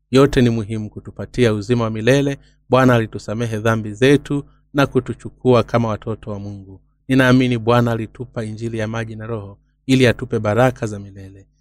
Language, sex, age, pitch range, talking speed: Swahili, male, 30-49, 110-130 Hz, 155 wpm